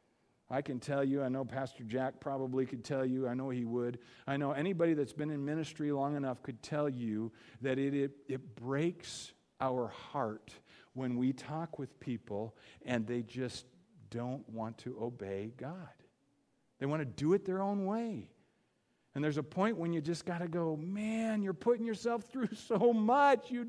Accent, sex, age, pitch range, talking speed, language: American, male, 50-69, 115-175 Hz, 185 wpm, English